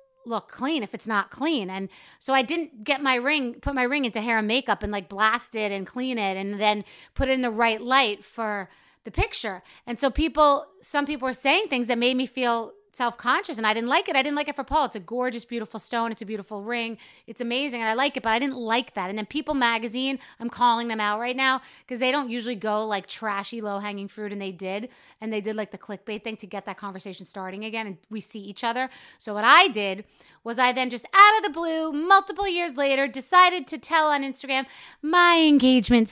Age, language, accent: 30-49, English, American